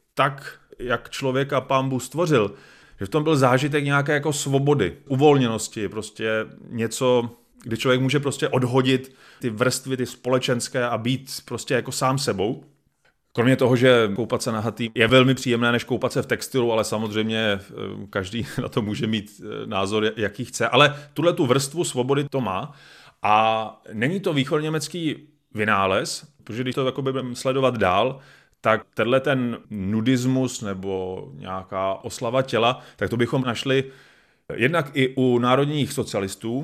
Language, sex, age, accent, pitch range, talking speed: Czech, male, 30-49, native, 110-130 Hz, 145 wpm